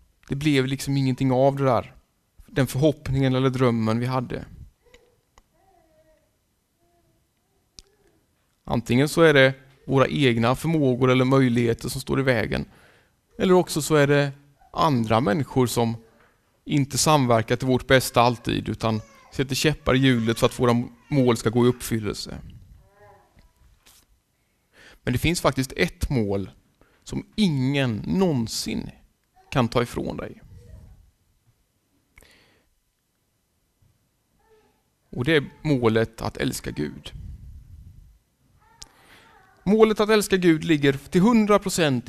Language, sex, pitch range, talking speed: Swedish, male, 115-155 Hz, 115 wpm